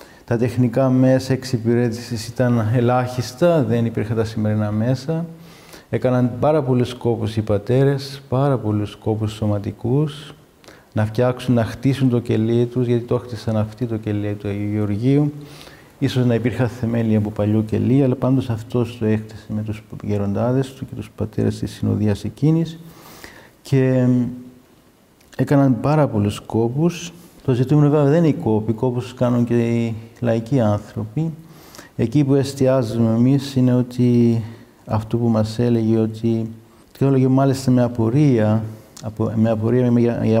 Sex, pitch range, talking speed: male, 110-130 Hz, 135 wpm